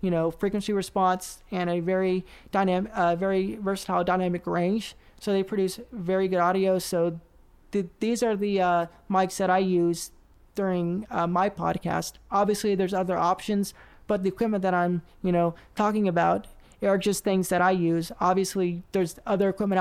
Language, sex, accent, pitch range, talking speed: English, male, American, 180-200 Hz, 165 wpm